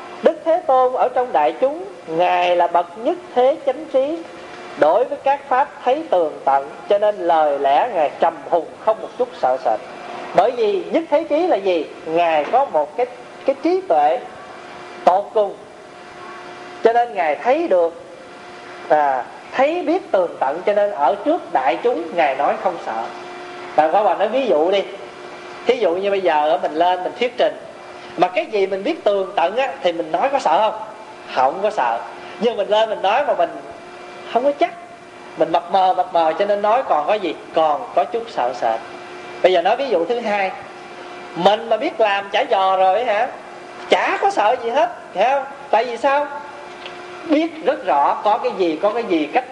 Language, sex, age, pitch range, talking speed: Vietnamese, male, 40-59, 180-285 Hz, 200 wpm